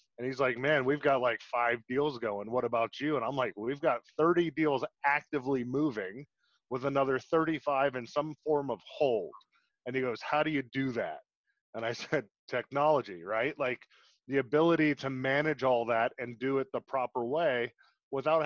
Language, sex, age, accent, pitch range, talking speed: English, male, 30-49, American, 130-155 Hz, 185 wpm